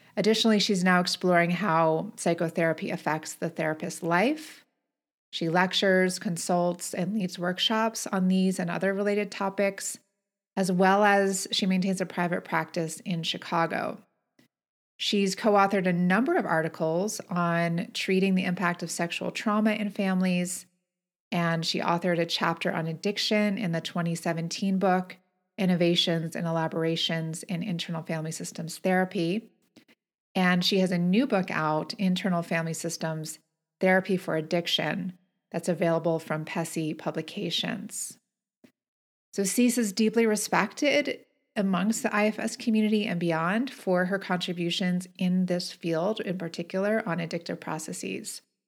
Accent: American